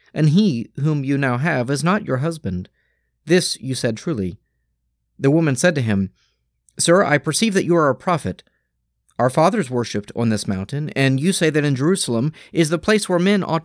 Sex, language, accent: male, English, American